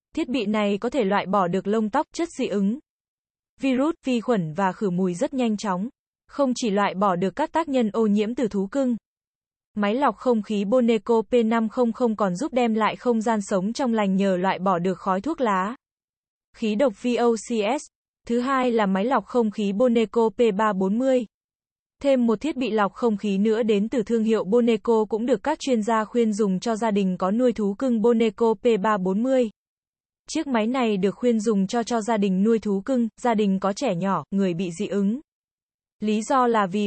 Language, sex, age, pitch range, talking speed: Vietnamese, female, 20-39, 200-245 Hz, 200 wpm